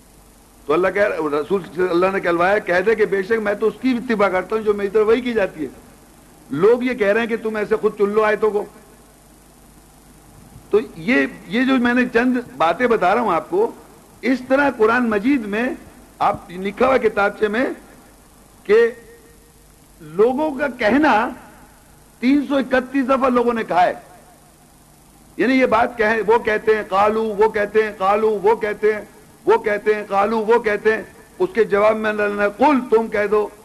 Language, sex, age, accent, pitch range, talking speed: English, male, 60-79, Indian, 205-250 Hz, 160 wpm